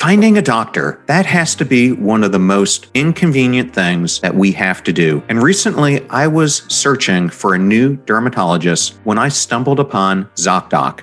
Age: 40-59